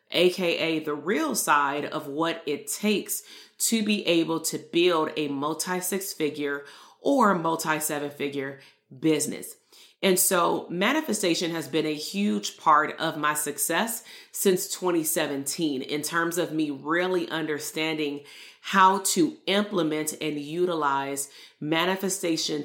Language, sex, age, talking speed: English, female, 30-49, 125 wpm